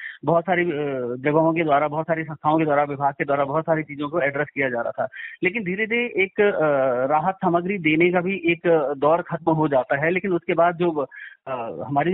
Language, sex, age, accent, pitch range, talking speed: Hindi, male, 30-49, native, 155-195 Hz, 215 wpm